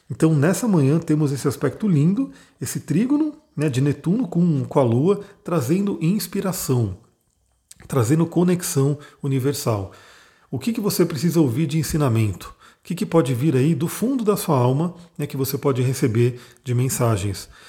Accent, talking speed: Brazilian, 160 wpm